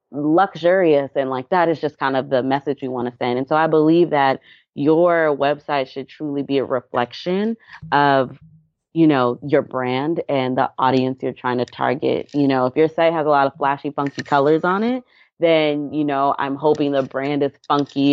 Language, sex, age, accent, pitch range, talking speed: English, female, 30-49, American, 135-160 Hz, 200 wpm